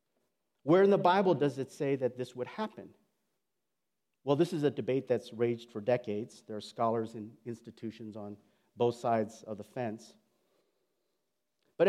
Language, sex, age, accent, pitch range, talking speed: English, male, 50-69, American, 135-215 Hz, 160 wpm